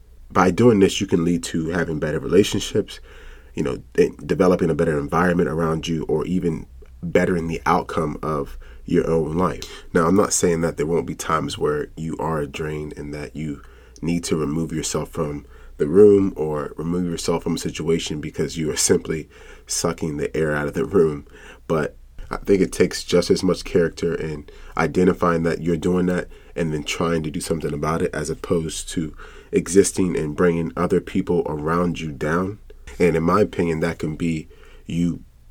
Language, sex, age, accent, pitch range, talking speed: English, male, 30-49, American, 75-85 Hz, 185 wpm